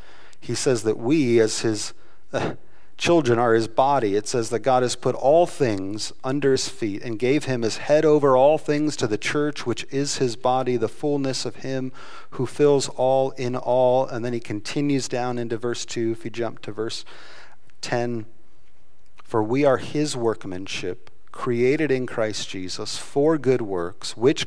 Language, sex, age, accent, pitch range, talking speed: English, male, 40-59, American, 110-135 Hz, 175 wpm